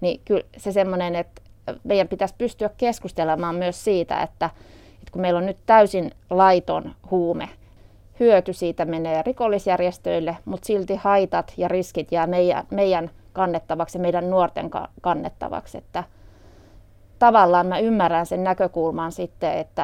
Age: 20-39